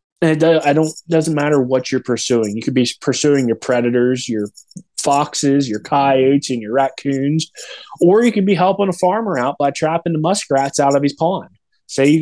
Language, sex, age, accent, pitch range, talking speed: English, male, 20-39, American, 130-165 Hz, 200 wpm